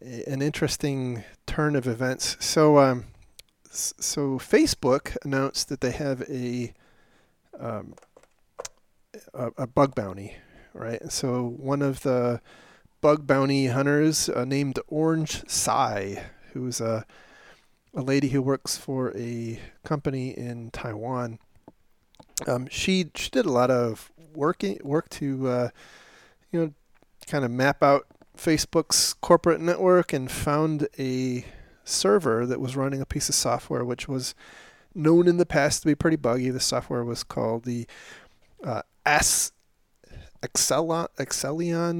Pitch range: 125-150 Hz